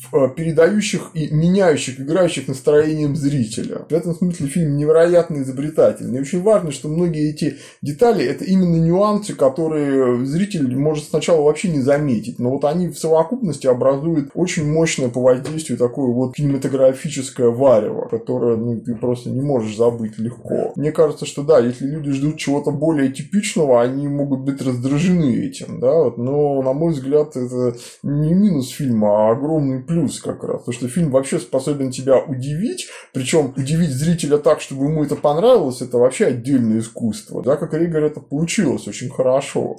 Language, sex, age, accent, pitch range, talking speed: Russian, male, 20-39, native, 130-165 Hz, 160 wpm